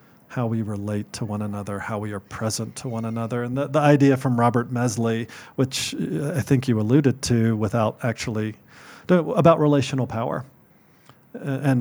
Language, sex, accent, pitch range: English, male, American, 115-135 Hz